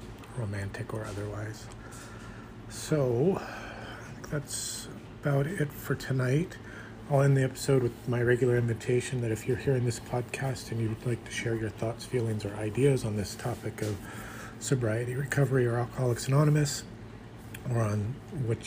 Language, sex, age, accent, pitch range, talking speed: English, male, 40-59, American, 110-125 Hz, 145 wpm